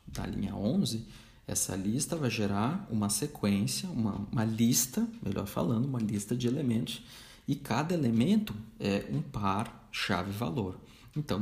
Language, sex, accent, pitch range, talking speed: Portuguese, male, Brazilian, 105-135 Hz, 130 wpm